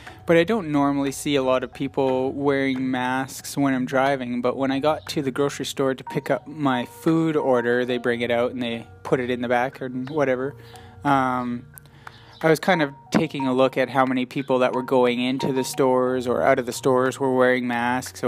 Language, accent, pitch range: English, American, 120-135 Hz